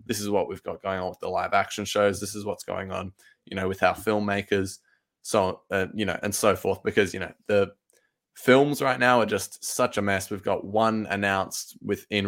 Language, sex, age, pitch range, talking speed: English, male, 20-39, 95-105 Hz, 225 wpm